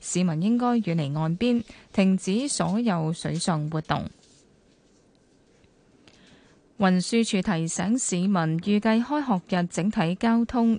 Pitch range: 165-215 Hz